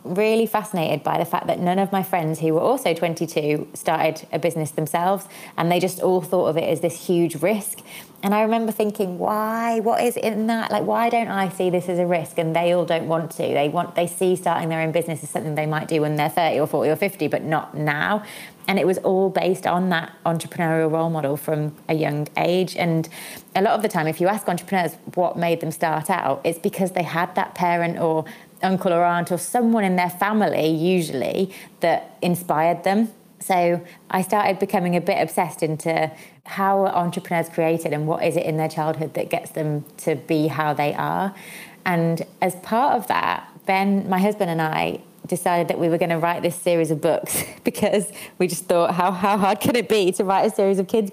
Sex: female